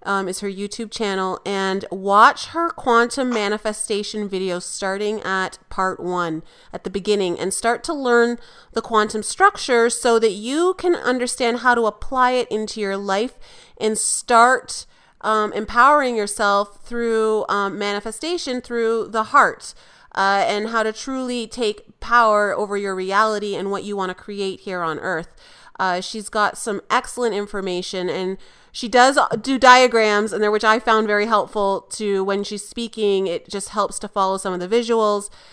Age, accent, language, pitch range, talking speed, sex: 30-49, American, English, 195-230 Hz, 165 wpm, female